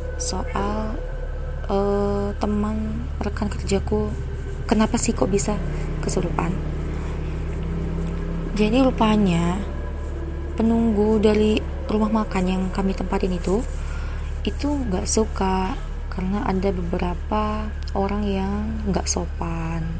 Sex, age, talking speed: female, 20-39, 90 wpm